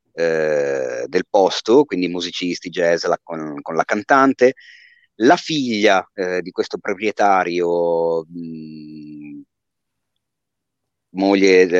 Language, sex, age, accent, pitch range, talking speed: Italian, male, 30-49, native, 90-145 Hz, 80 wpm